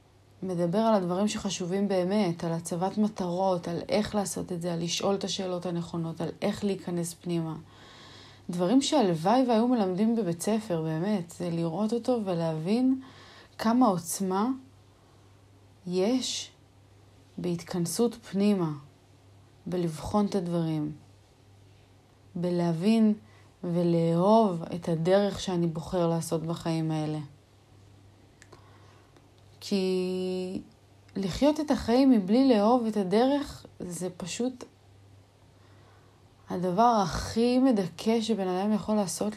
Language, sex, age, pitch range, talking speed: Hebrew, female, 30-49, 120-200 Hz, 100 wpm